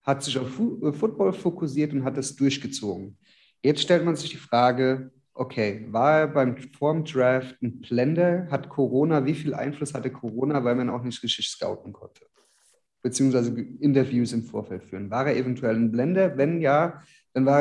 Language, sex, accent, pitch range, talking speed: German, male, German, 125-155 Hz, 170 wpm